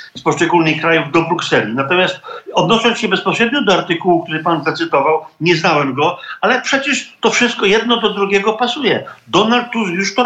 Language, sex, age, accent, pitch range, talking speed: Polish, male, 50-69, native, 160-200 Hz, 165 wpm